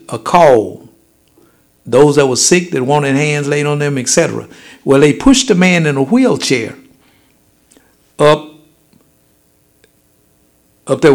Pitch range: 135-175 Hz